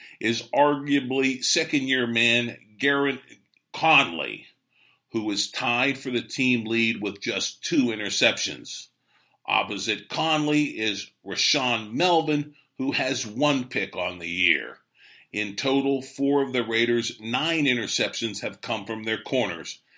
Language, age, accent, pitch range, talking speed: English, 50-69, American, 115-145 Hz, 125 wpm